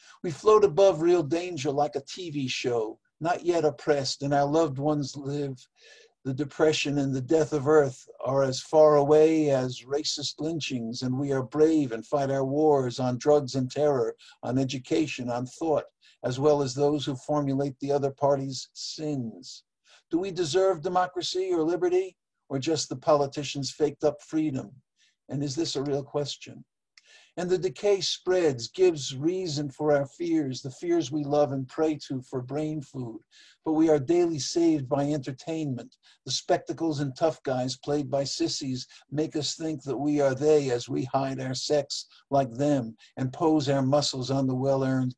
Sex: male